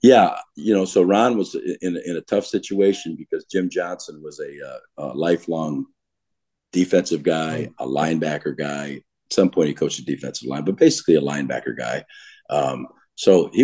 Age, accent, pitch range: 50-69, American, 75-105 Hz